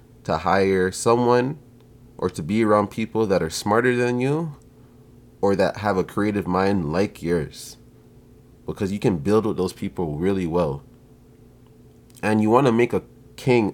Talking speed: 160 wpm